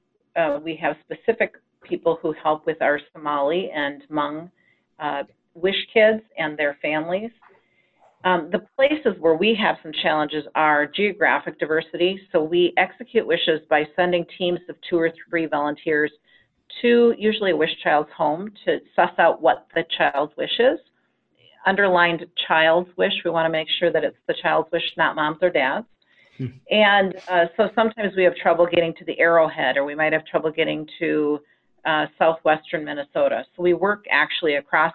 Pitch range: 155-190 Hz